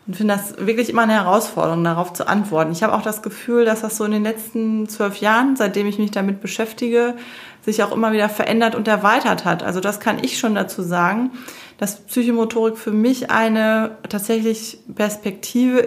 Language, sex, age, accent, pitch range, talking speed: German, female, 20-39, German, 185-225 Hz, 190 wpm